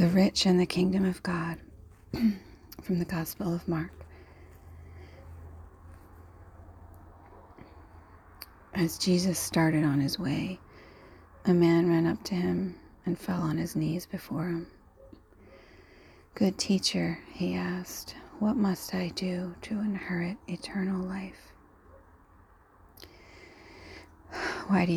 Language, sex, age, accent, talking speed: English, female, 40-59, American, 110 wpm